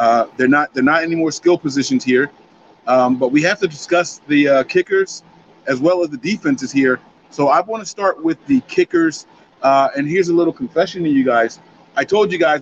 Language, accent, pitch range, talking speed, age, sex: English, American, 130-215 Hz, 220 wpm, 40-59, male